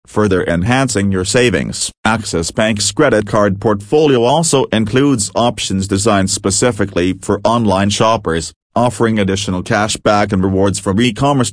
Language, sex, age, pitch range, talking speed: English, male, 40-59, 95-120 Hz, 130 wpm